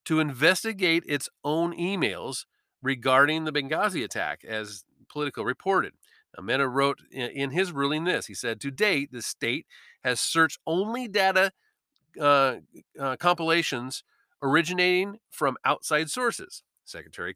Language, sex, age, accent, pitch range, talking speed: English, male, 40-59, American, 125-175 Hz, 125 wpm